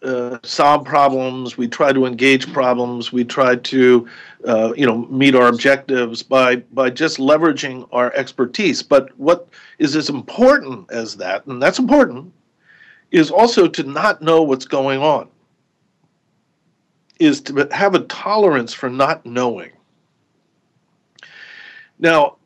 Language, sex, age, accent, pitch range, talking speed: English, male, 50-69, American, 130-170 Hz, 135 wpm